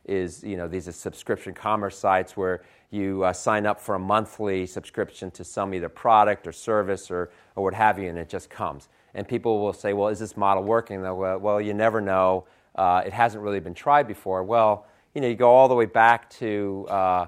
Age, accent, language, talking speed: 30-49, American, English, 220 wpm